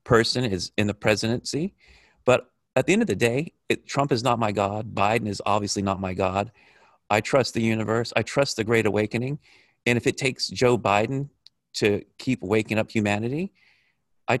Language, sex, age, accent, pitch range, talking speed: English, male, 40-59, American, 100-120 Hz, 185 wpm